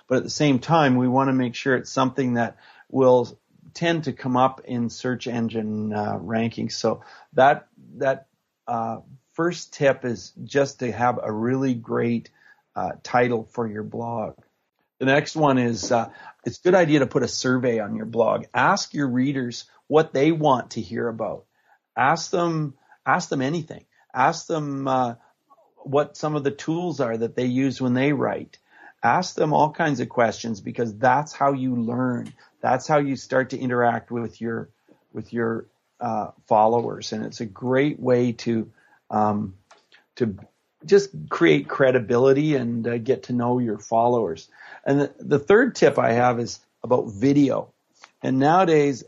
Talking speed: 170 wpm